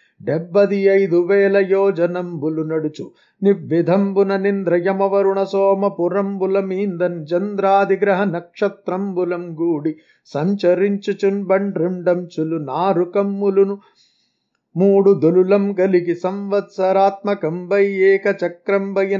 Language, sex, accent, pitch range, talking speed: Telugu, male, native, 175-205 Hz, 55 wpm